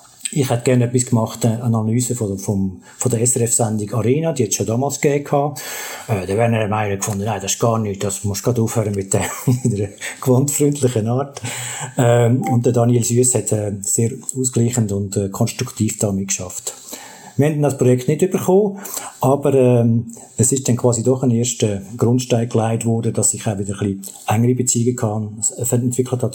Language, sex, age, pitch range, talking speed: German, male, 50-69, 110-135 Hz, 195 wpm